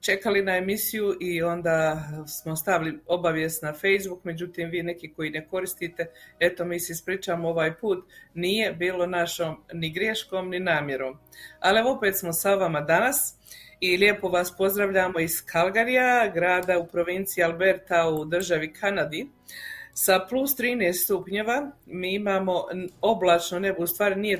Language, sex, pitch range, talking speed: Croatian, female, 175-215 Hz, 145 wpm